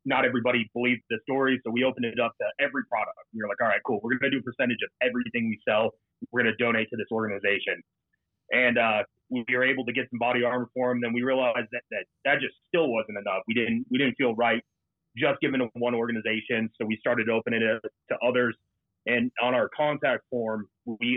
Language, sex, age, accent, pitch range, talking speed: English, male, 30-49, American, 115-130 Hz, 240 wpm